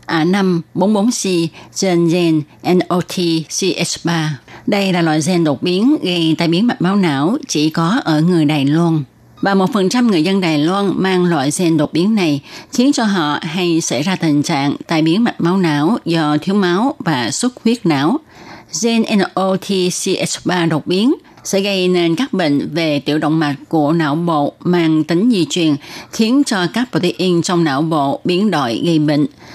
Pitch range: 160-200 Hz